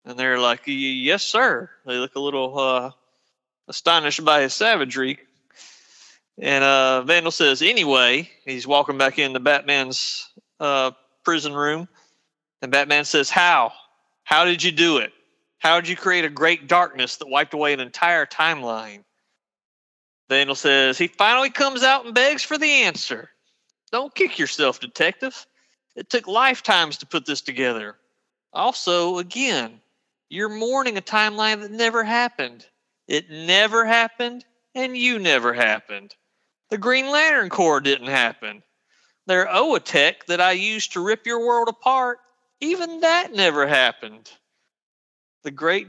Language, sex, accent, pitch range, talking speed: English, male, American, 135-215 Hz, 145 wpm